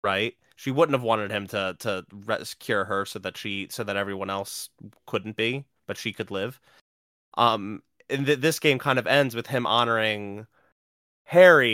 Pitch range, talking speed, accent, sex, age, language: 100-130 Hz, 180 wpm, American, male, 20-39, English